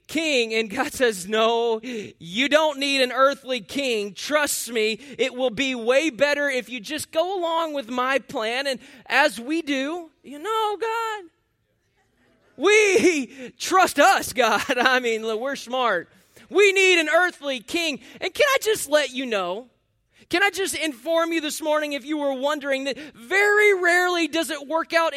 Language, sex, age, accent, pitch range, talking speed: English, male, 20-39, American, 255-330 Hz, 170 wpm